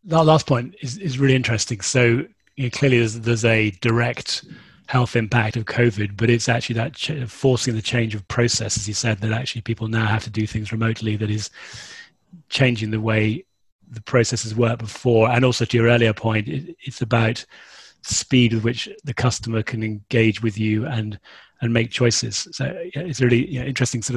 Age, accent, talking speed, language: 30-49, British, 190 wpm, English